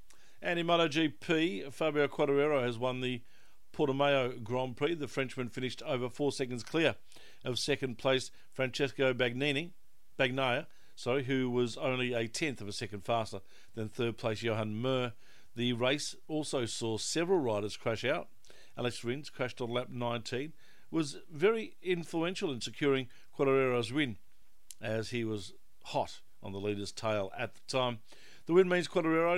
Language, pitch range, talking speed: English, 110-140 Hz, 155 wpm